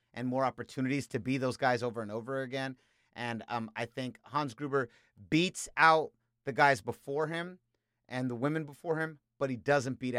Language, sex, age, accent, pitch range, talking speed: English, male, 30-49, American, 115-140 Hz, 190 wpm